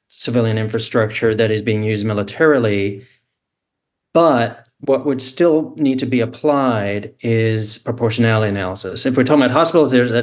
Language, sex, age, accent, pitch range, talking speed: English, male, 40-59, American, 110-135 Hz, 140 wpm